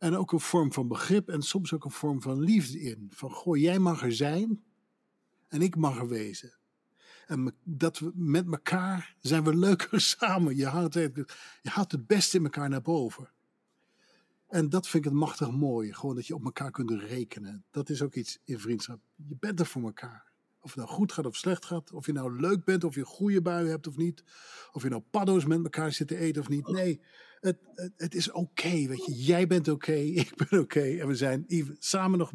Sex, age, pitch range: male, 50-69, 130-175 Hz